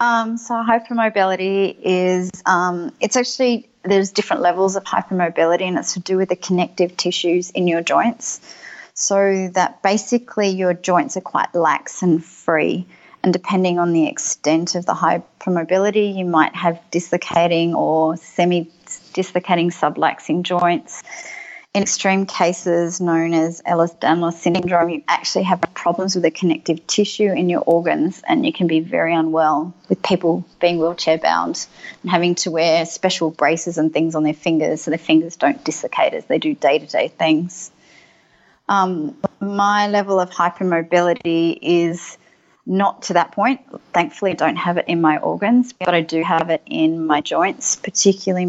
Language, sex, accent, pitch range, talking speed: English, female, Australian, 170-195 Hz, 155 wpm